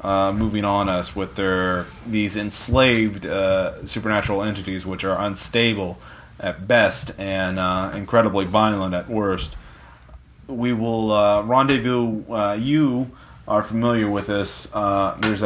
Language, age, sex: English, 30-49, male